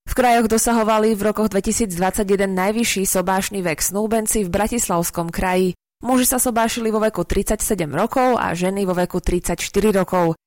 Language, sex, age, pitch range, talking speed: Slovak, female, 20-39, 185-225 Hz, 150 wpm